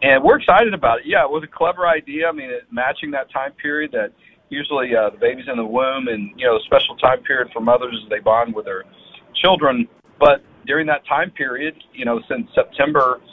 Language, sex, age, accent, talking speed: English, male, 40-59, American, 225 wpm